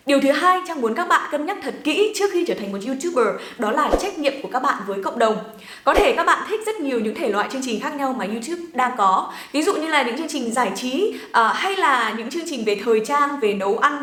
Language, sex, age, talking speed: Vietnamese, female, 10-29, 280 wpm